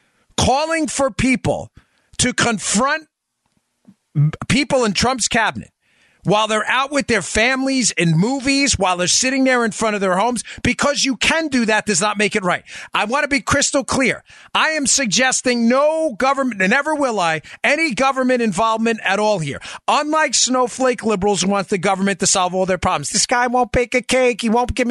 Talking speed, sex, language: 190 wpm, male, English